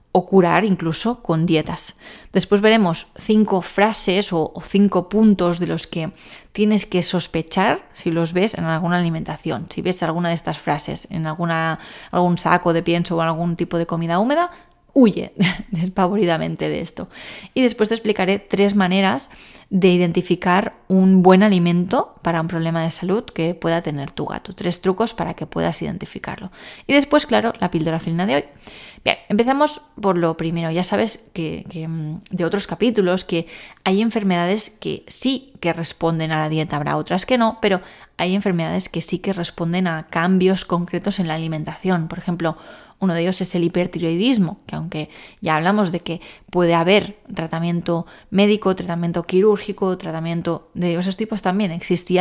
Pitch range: 165-200 Hz